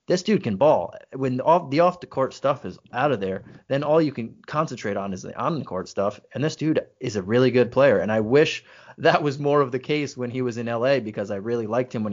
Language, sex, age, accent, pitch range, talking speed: English, male, 30-49, American, 105-135 Hz, 255 wpm